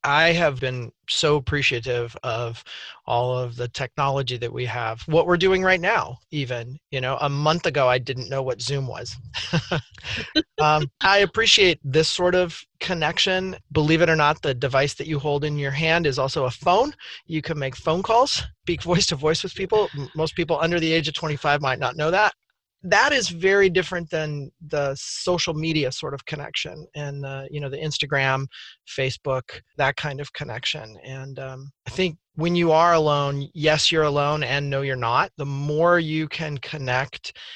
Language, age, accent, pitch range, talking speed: English, 30-49, American, 130-165 Hz, 185 wpm